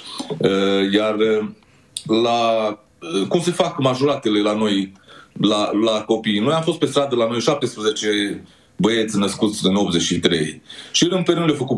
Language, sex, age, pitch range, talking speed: Romanian, male, 30-49, 105-140 Hz, 145 wpm